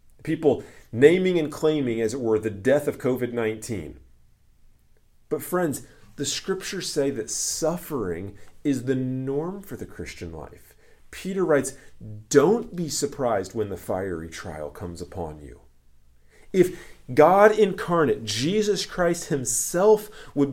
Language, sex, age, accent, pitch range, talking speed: English, male, 40-59, American, 115-170 Hz, 130 wpm